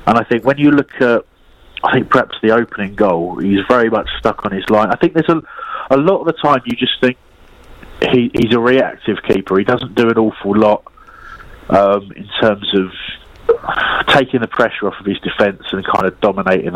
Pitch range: 100-125 Hz